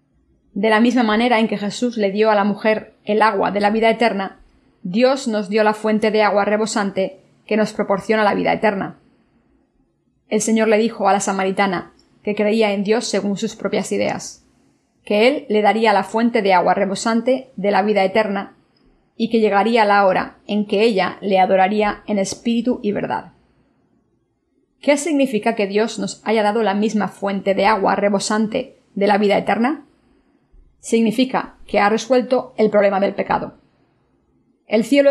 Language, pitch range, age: Spanish, 200-225 Hz, 20-39